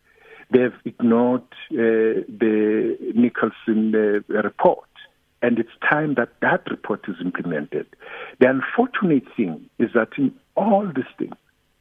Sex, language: male, English